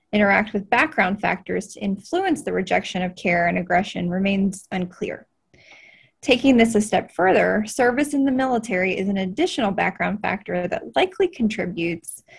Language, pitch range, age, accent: English, 190-235 Hz, 20-39, American